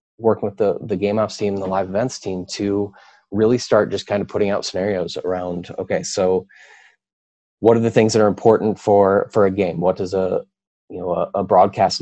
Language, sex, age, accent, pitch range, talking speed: English, male, 20-39, American, 90-105 Hz, 215 wpm